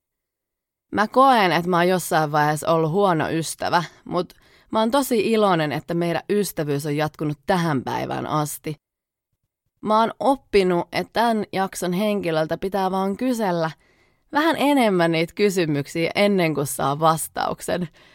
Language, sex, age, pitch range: Finnish, female, 30-49, 155-205 Hz